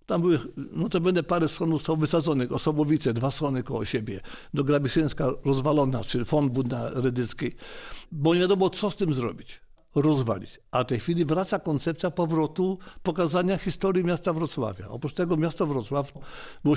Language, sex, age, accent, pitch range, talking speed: Polish, male, 50-69, native, 135-165 Hz, 155 wpm